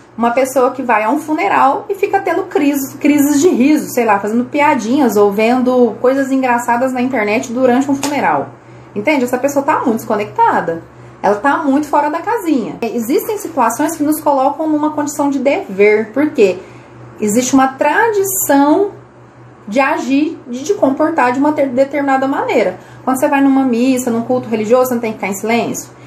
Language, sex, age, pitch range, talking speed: Portuguese, female, 30-49, 240-295 Hz, 175 wpm